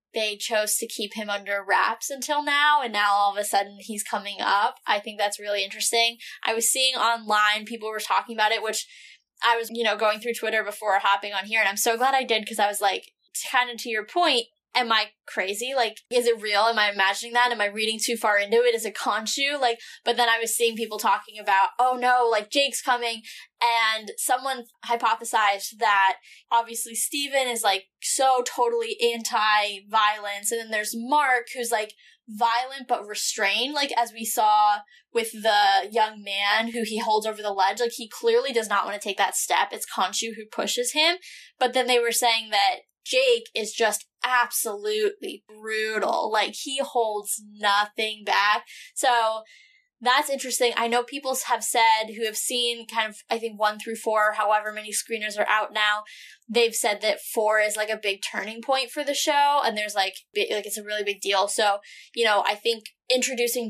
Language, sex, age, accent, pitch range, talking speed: English, female, 10-29, American, 210-245 Hz, 200 wpm